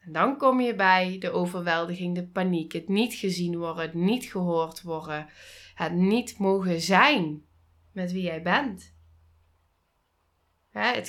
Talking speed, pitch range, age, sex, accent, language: 135 wpm, 175-215 Hz, 20-39, female, Dutch, Dutch